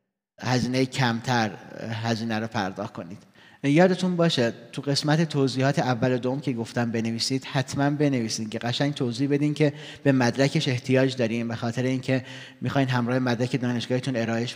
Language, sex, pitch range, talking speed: Persian, male, 125-145 Hz, 150 wpm